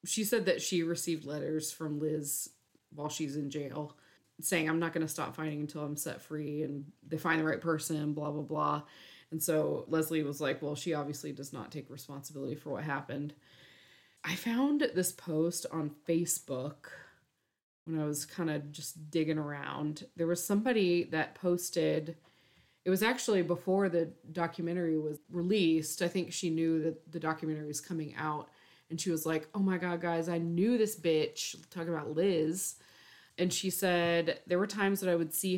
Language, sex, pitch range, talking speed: English, female, 150-175 Hz, 185 wpm